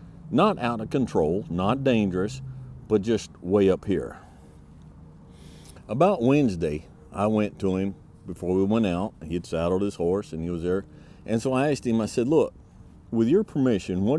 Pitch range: 90-115 Hz